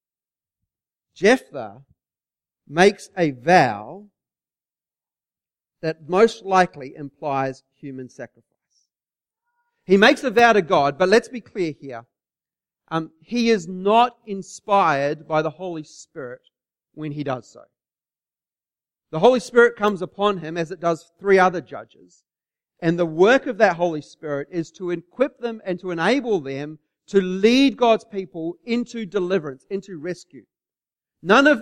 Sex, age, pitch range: male, 40-59, 155-230 Hz